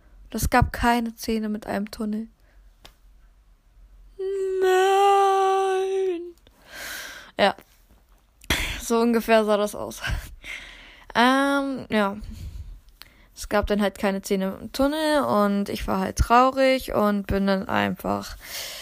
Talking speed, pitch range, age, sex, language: 110 wpm, 200-255 Hz, 10-29, female, German